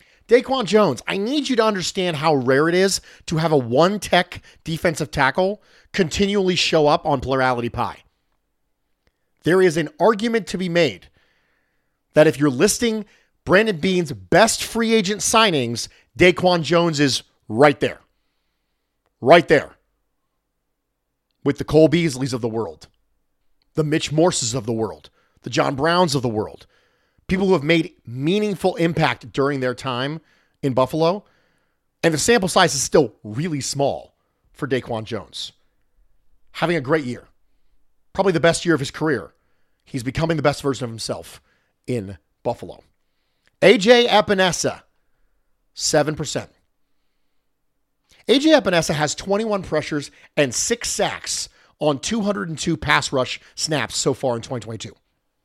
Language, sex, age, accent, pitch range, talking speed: English, male, 40-59, American, 135-185 Hz, 140 wpm